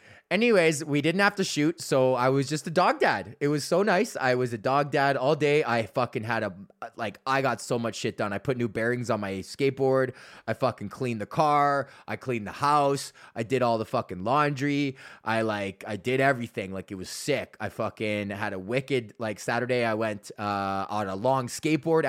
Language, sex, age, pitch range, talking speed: English, male, 20-39, 115-155 Hz, 215 wpm